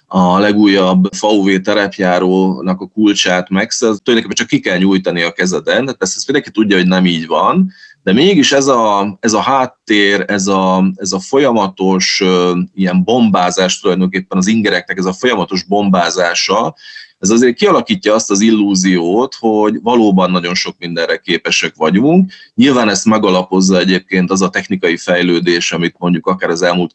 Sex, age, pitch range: male, 30-49, 95-110 Hz